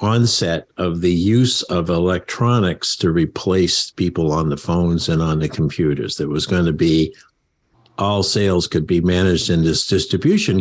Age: 60-79